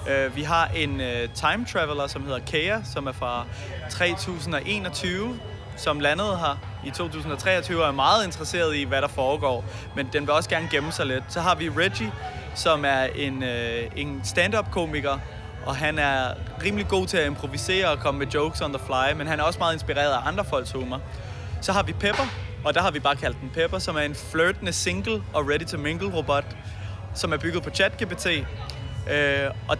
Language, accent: Danish, native